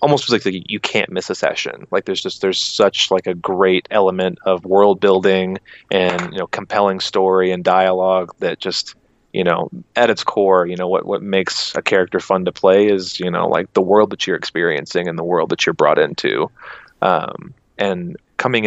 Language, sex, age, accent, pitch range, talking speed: English, male, 30-49, American, 90-100 Hz, 205 wpm